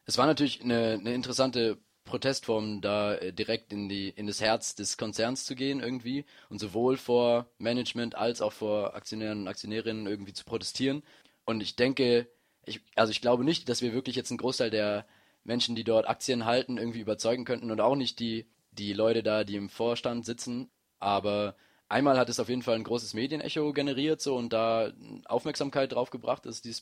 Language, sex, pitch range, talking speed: German, male, 105-125 Hz, 190 wpm